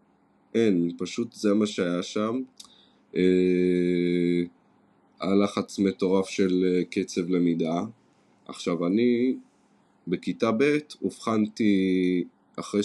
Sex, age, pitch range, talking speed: male, 20-39, 90-105 Hz, 85 wpm